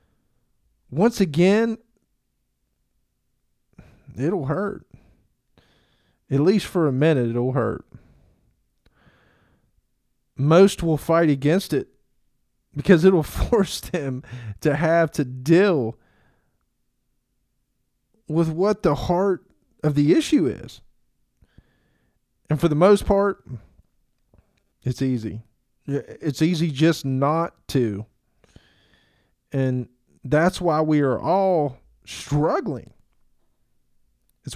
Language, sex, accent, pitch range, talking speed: English, male, American, 130-180 Hz, 90 wpm